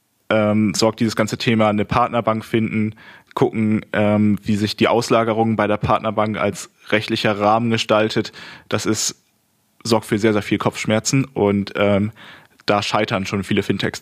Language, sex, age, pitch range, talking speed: German, male, 20-39, 105-115 Hz, 155 wpm